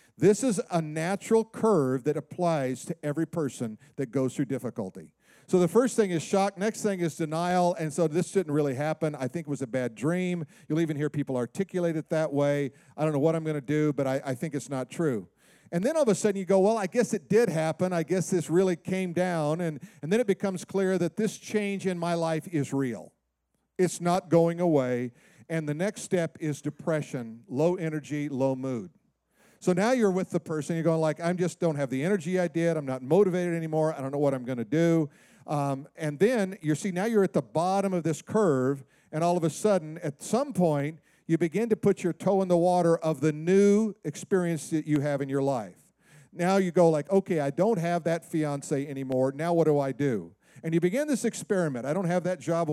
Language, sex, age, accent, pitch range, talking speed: English, male, 50-69, American, 150-190 Hz, 230 wpm